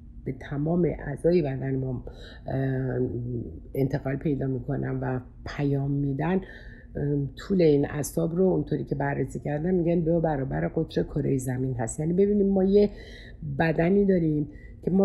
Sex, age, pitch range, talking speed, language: female, 60-79, 135-175 Hz, 135 wpm, Persian